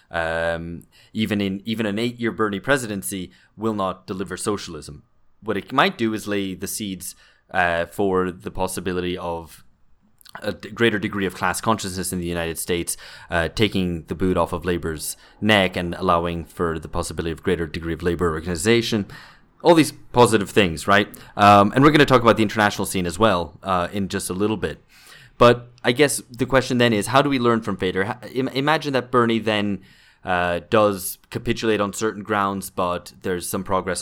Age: 20-39